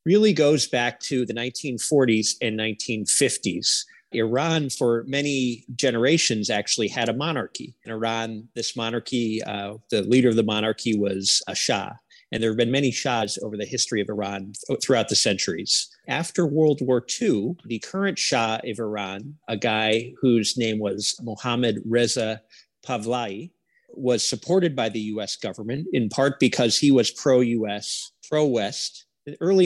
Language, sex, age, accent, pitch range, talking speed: English, male, 40-59, American, 110-135 Hz, 150 wpm